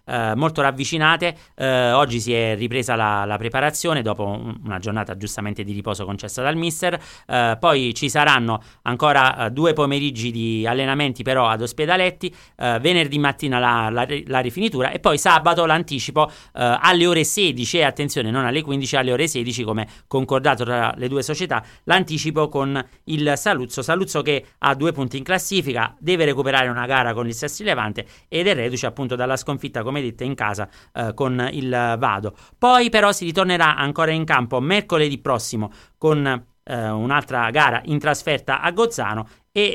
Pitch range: 120-155 Hz